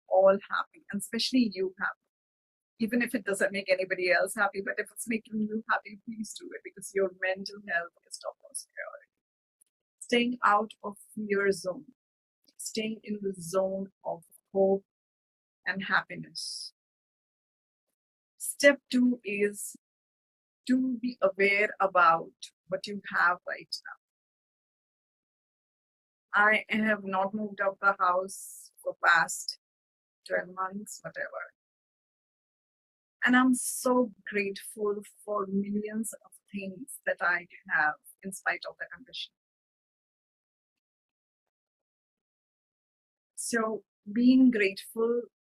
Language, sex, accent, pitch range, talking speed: English, female, Indian, 195-230 Hz, 115 wpm